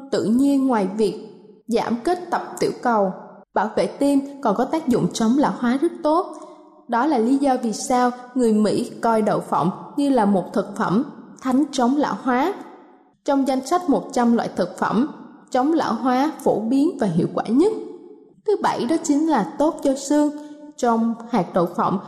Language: Vietnamese